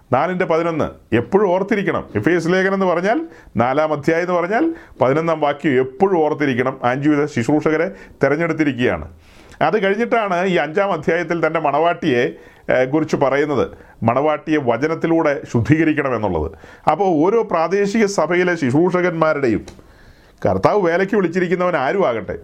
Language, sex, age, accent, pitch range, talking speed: Malayalam, male, 40-59, native, 140-190 Hz, 105 wpm